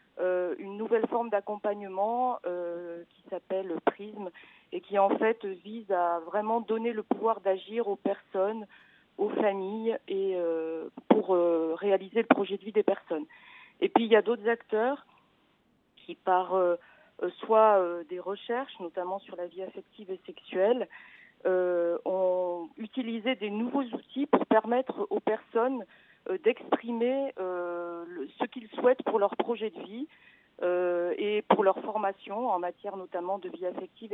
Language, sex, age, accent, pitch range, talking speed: French, female, 40-59, French, 190-235 Hz, 155 wpm